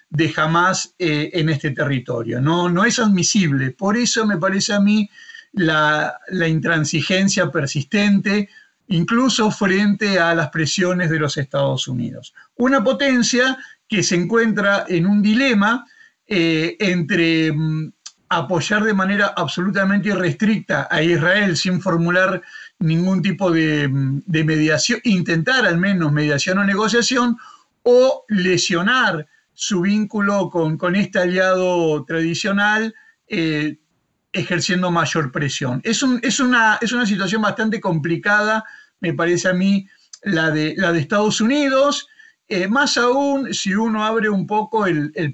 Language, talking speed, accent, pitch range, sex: Spanish, 130 wpm, Argentinian, 165-220 Hz, male